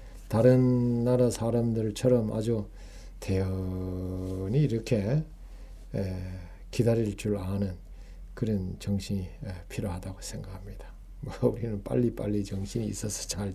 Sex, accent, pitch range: male, native, 100-145 Hz